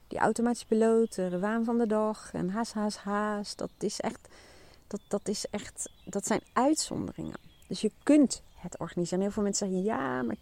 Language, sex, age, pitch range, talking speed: Dutch, female, 30-49, 155-205 Hz, 190 wpm